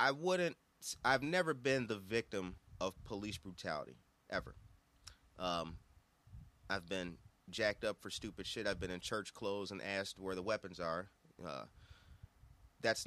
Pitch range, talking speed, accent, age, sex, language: 100-170 Hz, 145 wpm, American, 30-49, male, English